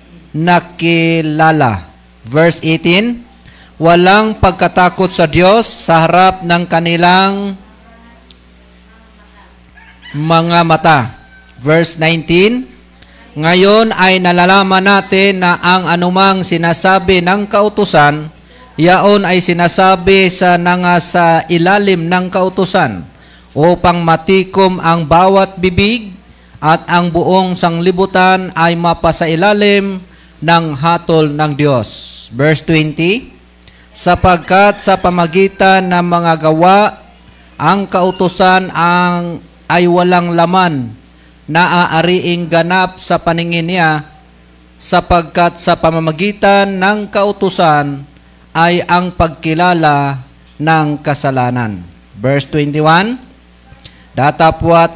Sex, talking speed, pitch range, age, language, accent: male, 90 wpm, 160-185 Hz, 50-69, Filipino, native